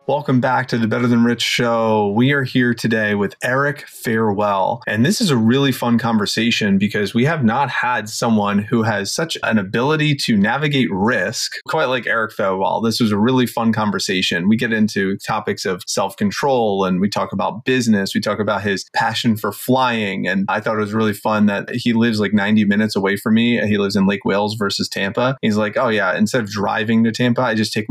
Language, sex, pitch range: English, male, 105-125 Hz